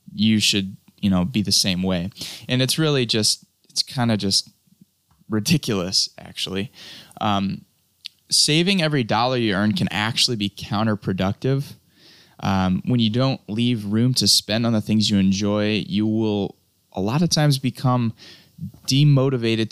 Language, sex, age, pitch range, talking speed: English, male, 10-29, 100-130 Hz, 150 wpm